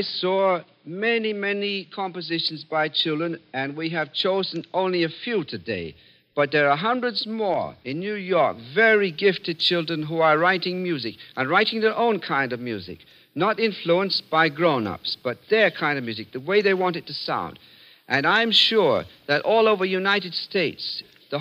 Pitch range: 155-205 Hz